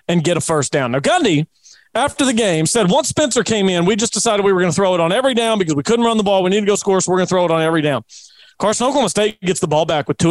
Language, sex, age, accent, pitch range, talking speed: English, male, 40-59, American, 180-245 Hz, 325 wpm